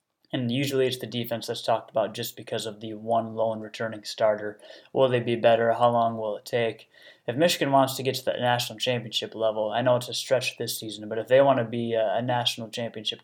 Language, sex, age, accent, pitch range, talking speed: English, male, 20-39, American, 115-125 Hz, 230 wpm